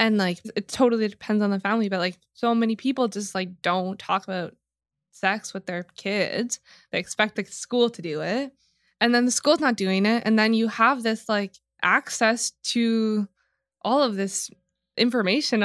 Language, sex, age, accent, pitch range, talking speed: English, female, 20-39, American, 200-255 Hz, 185 wpm